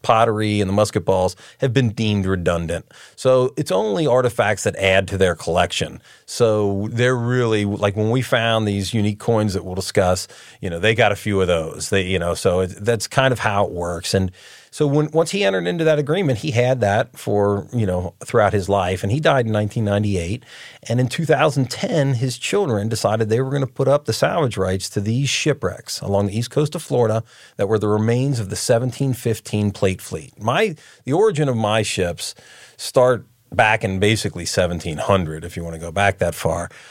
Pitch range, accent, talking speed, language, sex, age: 95-125 Hz, American, 205 wpm, English, male, 30-49